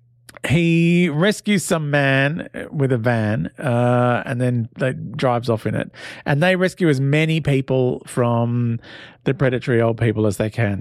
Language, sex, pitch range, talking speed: English, male, 115-150 Hz, 160 wpm